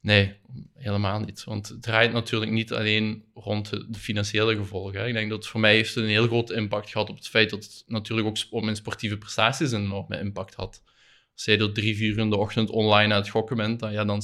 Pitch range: 105-115 Hz